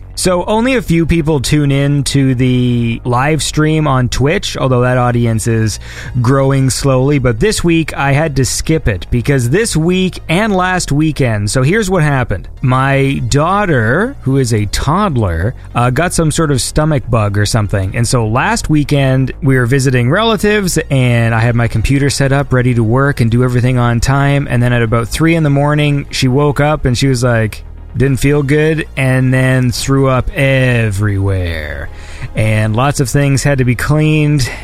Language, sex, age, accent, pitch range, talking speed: English, male, 30-49, American, 120-150 Hz, 185 wpm